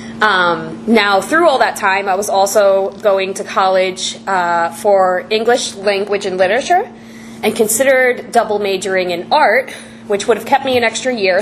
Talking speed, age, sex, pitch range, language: 170 wpm, 20-39, female, 190-235 Hz, English